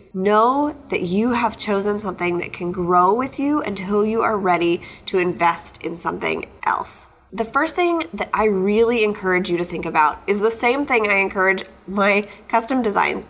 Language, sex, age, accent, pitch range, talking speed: English, female, 20-39, American, 185-225 Hz, 180 wpm